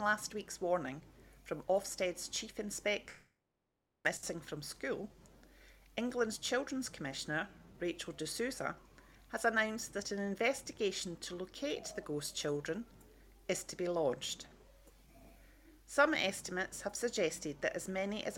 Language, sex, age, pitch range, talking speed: English, female, 40-59, 175-235 Hz, 120 wpm